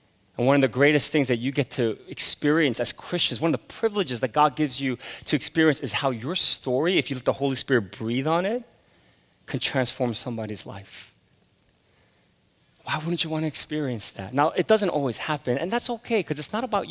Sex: male